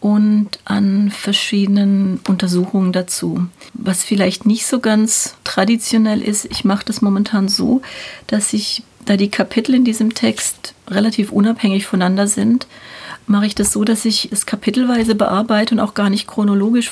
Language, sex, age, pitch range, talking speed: German, female, 40-59, 200-225 Hz, 155 wpm